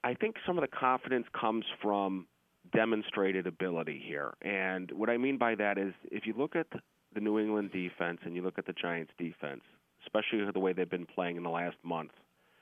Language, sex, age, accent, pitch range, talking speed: English, male, 30-49, American, 90-105 Hz, 205 wpm